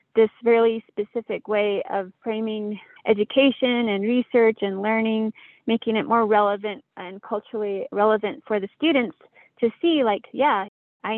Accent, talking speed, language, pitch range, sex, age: American, 140 wpm, English, 205-230 Hz, female, 30-49